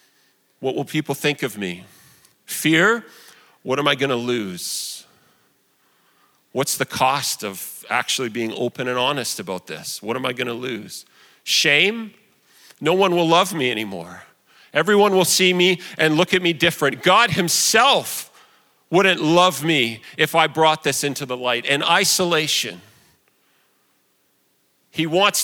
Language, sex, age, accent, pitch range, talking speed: English, male, 40-59, American, 150-210 Hz, 145 wpm